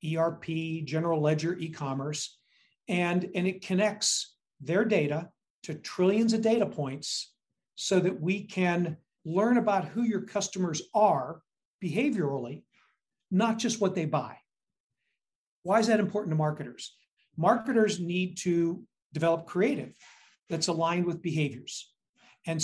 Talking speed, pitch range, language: 125 wpm, 165-205 Hz, English